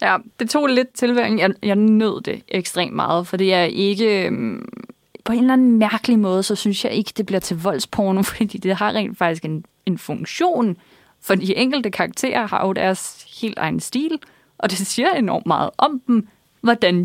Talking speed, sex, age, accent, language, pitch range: 190 wpm, female, 20-39, native, Danish, 190-240 Hz